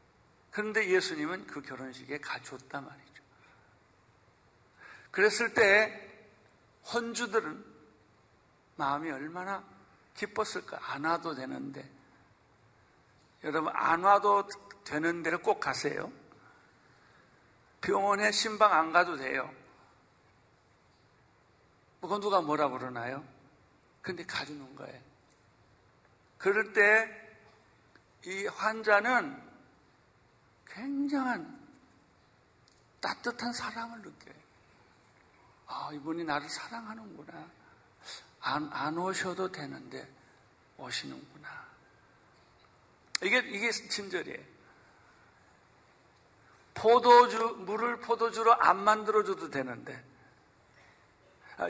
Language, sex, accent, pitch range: Korean, male, native, 145-230 Hz